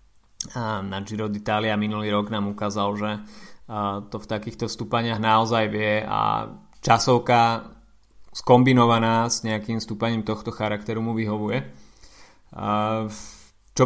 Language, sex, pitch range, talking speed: Slovak, male, 105-125 Hz, 105 wpm